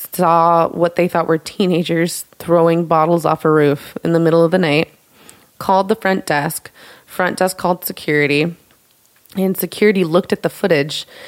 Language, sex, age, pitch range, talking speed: English, female, 20-39, 160-180 Hz, 165 wpm